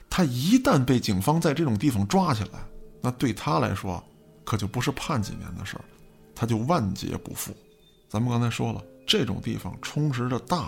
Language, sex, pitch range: Chinese, male, 100-145 Hz